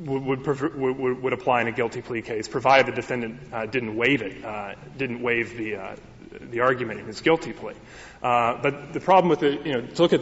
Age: 30-49